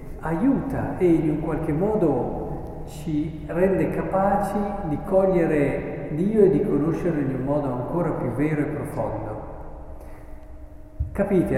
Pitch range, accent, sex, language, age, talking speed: 135-165 Hz, native, male, Italian, 50-69, 120 wpm